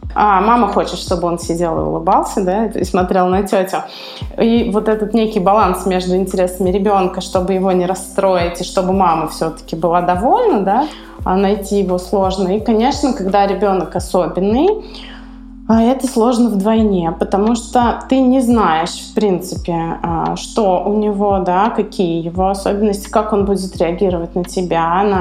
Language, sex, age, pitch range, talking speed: Russian, female, 20-39, 185-245 Hz, 150 wpm